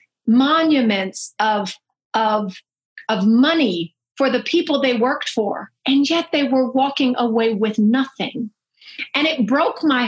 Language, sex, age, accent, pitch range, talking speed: English, female, 50-69, American, 230-285 Hz, 135 wpm